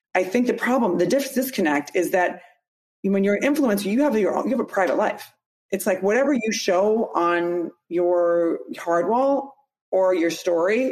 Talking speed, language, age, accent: 175 wpm, English, 30-49, American